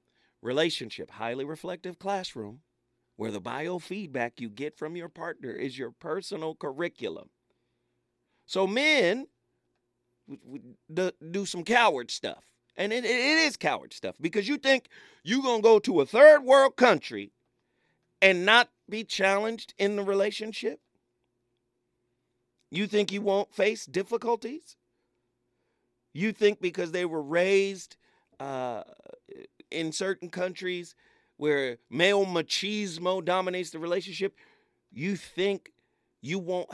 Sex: male